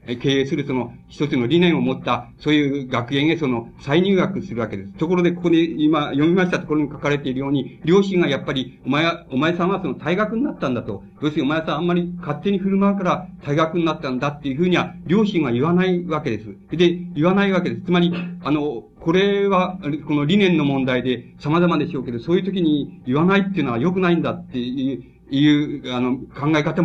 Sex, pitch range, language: male, 135-180 Hz, Japanese